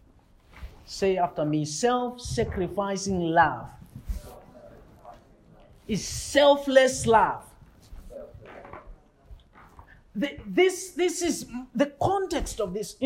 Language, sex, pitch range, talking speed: English, male, 180-295 Hz, 80 wpm